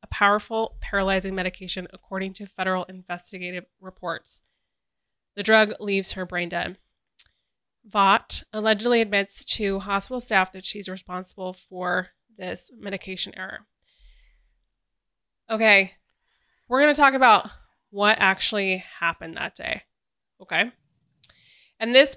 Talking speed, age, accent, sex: 115 wpm, 20-39, American, female